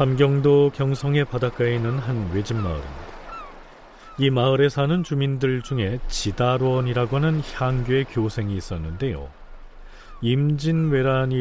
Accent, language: native, Korean